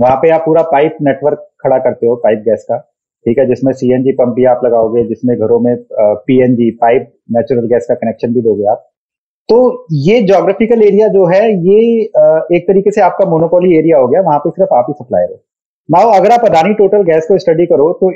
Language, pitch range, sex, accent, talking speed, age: Hindi, 140-195 Hz, male, native, 215 wpm, 30-49